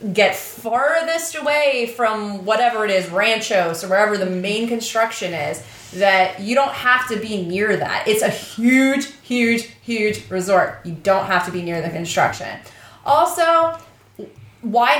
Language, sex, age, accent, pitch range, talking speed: English, female, 30-49, American, 185-230 Hz, 150 wpm